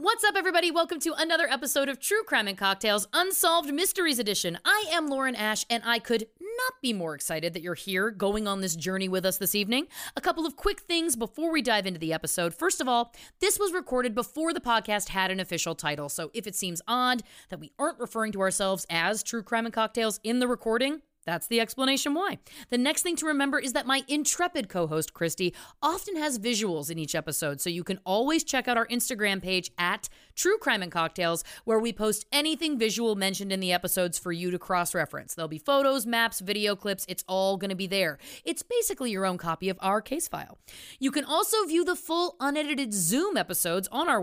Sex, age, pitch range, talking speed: female, 30-49, 185-295 Hz, 220 wpm